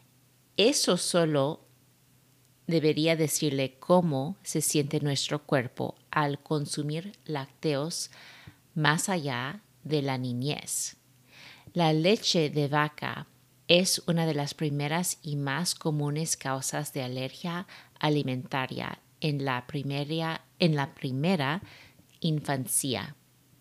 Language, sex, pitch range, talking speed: Spanish, female, 135-165 Hz, 100 wpm